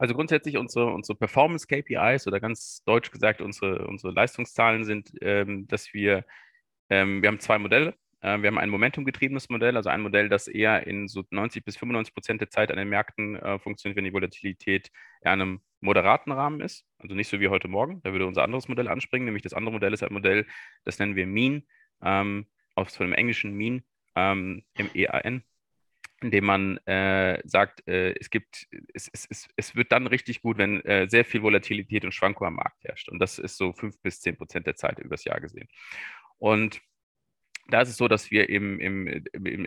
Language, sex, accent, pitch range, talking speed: German, male, German, 100-120 Hz, 205 wpm